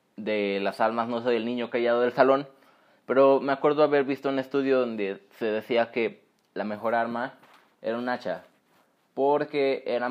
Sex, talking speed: male, 170 wpm